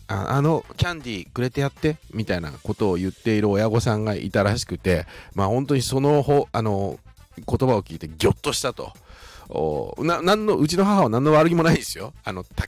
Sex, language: male, Japanese